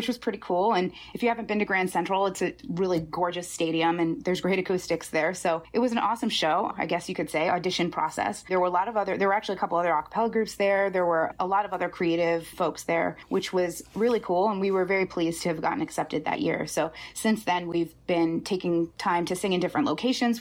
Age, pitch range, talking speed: 20-39, 165-200 Hz, 255 wpm